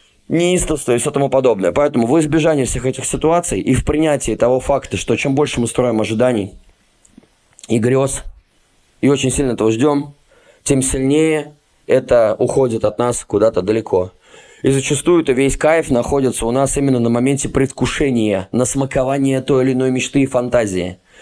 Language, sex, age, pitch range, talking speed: Russian, male, 20-39, 120-150 Hz, 160 wpm